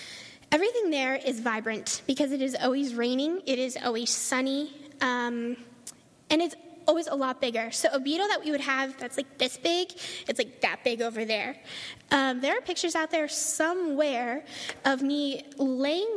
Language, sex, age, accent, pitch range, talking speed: English, female, 10-29, American, 255-310 Hz, 175 wpm